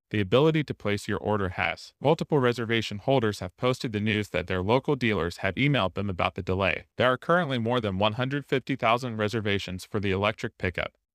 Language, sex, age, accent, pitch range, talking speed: English, male, 30-49, American, 95-125 Hz, 190 wpm